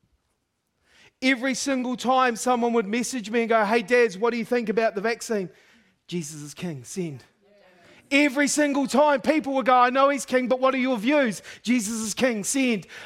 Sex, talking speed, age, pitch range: male, 190 wpm, 30-49, 170-270 Hz